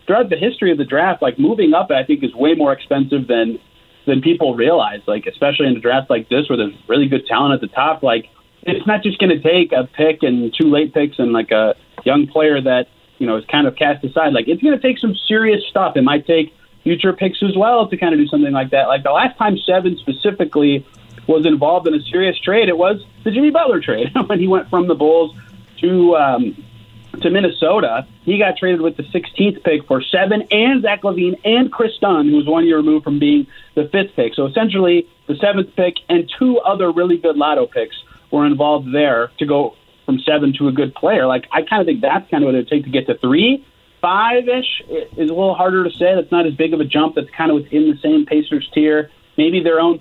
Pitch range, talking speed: 145-195 Hz, 240 wpm